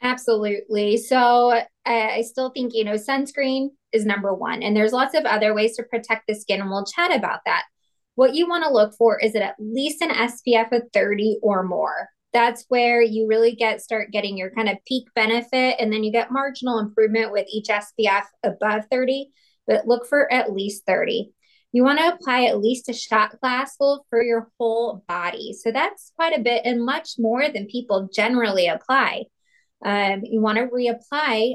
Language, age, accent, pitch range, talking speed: English, 20-39, American, 210-255 Hz, 190 wpm